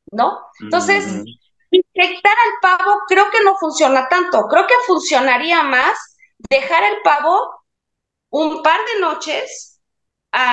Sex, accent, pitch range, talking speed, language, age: female, Mexican, 230-315 Hz, 125 wpm, Spanish, 30-49